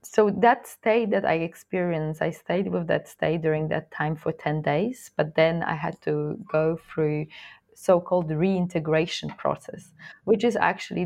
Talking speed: 165 wpm